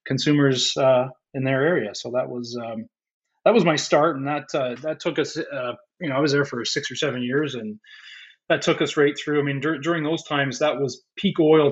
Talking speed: 230 wpm